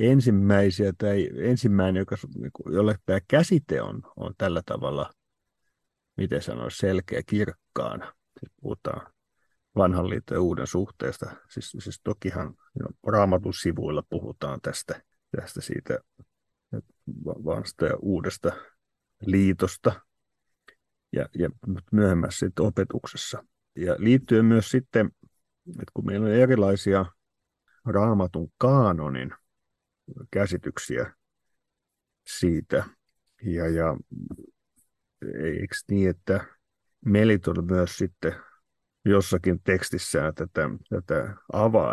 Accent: native